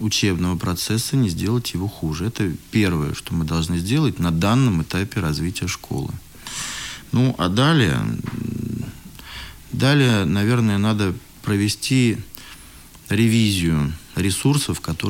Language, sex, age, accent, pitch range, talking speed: Russian, male, 40-59, native, 90-120 Hz, 105 wpm